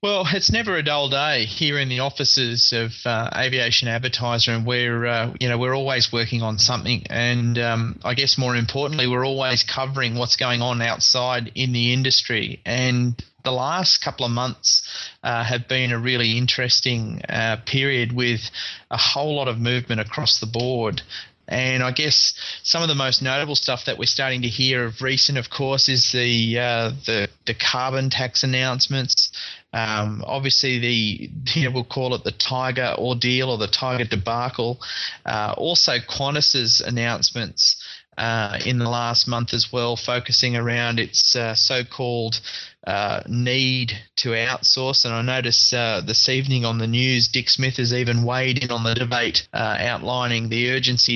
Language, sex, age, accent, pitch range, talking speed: English, male, 30-49, Australian, 115-130 Hz, 170 wpm